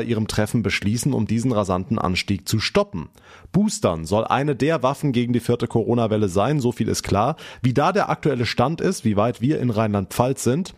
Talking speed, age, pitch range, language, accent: 195 wpm, 30-49, 100-135 Hz, German, German